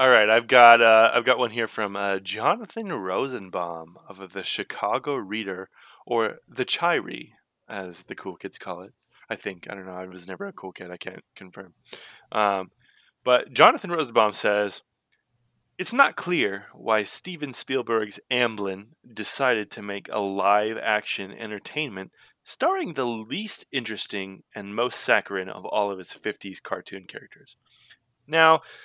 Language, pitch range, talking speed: English, 100-140 Hz, 150 wpm